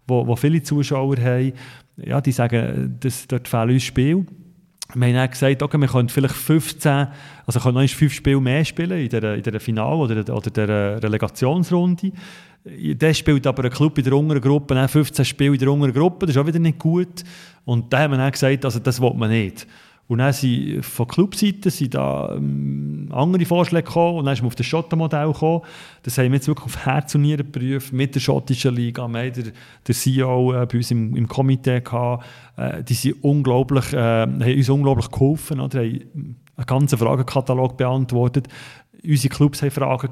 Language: German